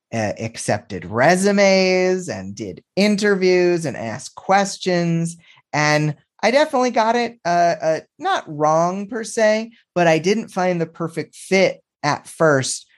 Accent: American